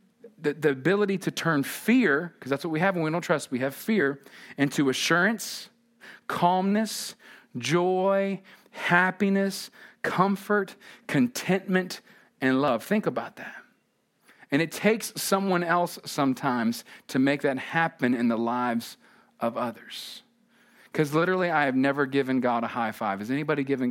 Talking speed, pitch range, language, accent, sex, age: 145 wpm, 135-210 Hz, English, American, male, 40-59